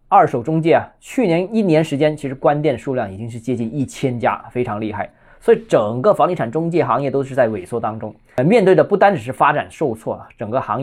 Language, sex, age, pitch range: Chinese, male, 20-39, 120-185 Hz